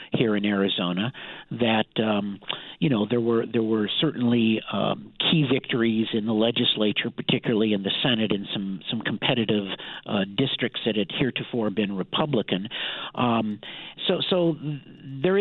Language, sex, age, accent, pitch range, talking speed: English, male, 50-69, American, 110-150 Hz, 145 wpm